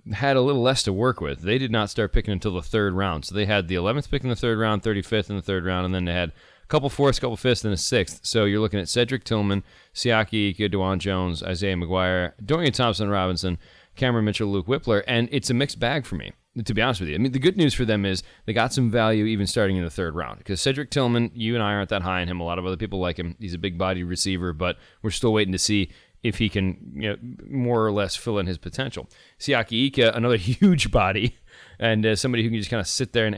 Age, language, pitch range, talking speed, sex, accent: 30-49, English, 95-120 Hz, 265 wpm, male, American